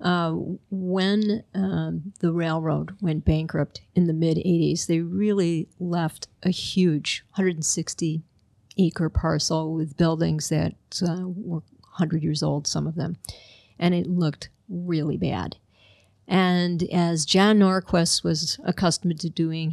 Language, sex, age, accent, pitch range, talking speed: English, female, 50-69, American, 160-185 Hz, 130 wpm